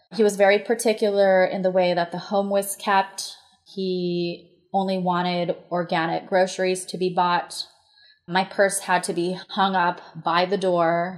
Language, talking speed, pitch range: English, 160 wpm, 175-195 Hz